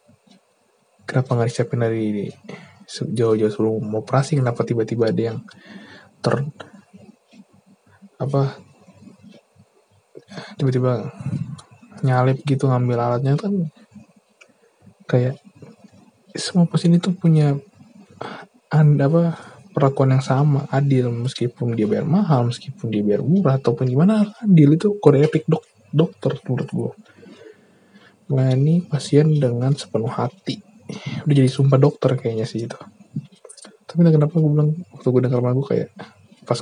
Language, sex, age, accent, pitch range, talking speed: English, male, 20-39, Indonesian, 130-165 Hz, 115 wpm